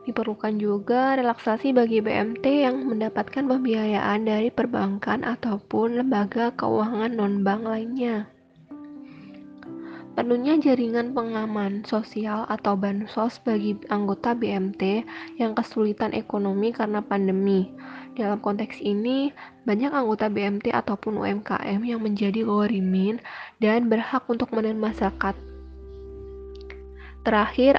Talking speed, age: 100 wpm, 10-29